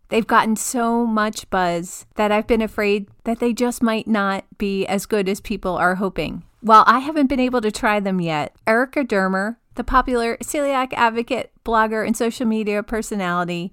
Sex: female